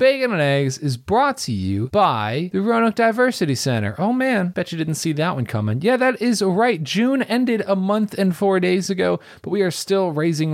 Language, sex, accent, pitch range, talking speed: English, male, American, 120-185 Hz, 215 wpm